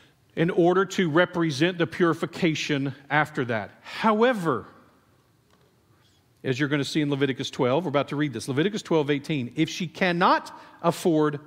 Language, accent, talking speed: English, American, 145 wpm